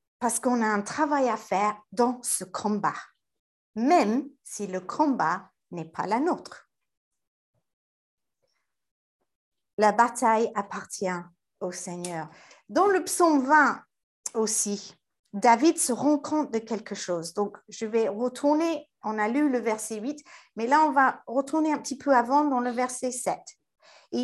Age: 50-69